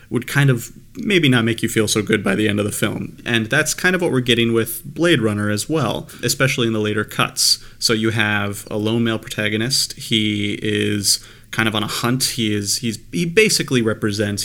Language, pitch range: English, 105-120 Hz